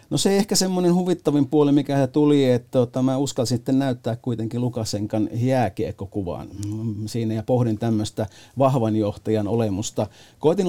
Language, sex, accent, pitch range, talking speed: Finnish, male, native, 110-130 Hz, 135 wpm